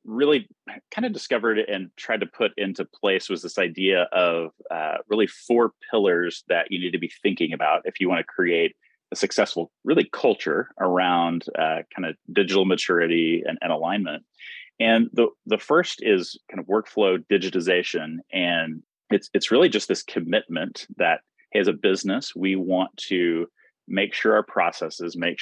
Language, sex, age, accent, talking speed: English, male, 30-49, American, 170 wpm